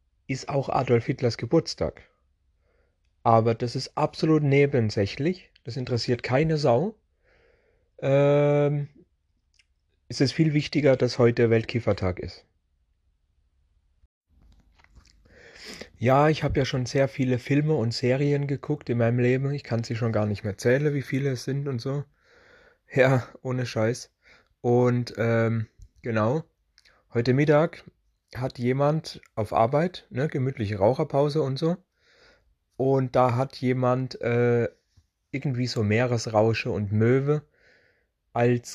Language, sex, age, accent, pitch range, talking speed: German, male, 30-49, German, 110-145 Hz, 120 wpm